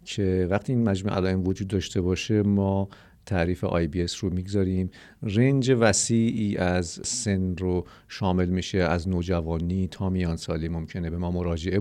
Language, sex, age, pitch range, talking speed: Persian, male, 50-69, 90-110 Hz, 160 wpm